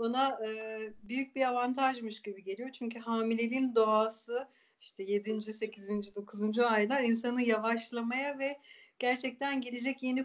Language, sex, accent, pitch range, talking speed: Turkish, female, native, 220-250 Hz, 125 wpm